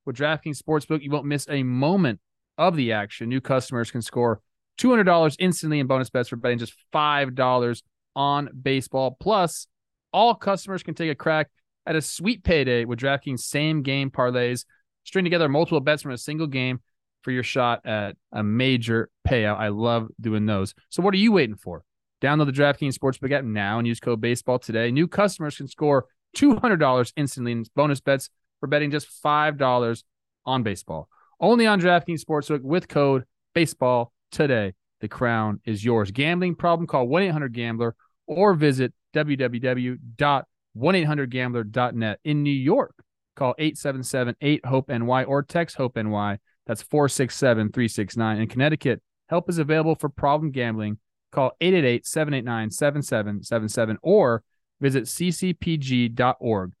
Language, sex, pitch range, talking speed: English, male, 120-155 Hz, 140 wpm